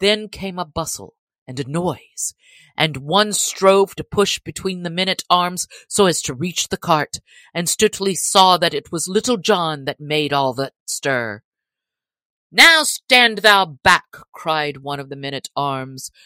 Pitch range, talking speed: 150-215 Hz, 160 wpm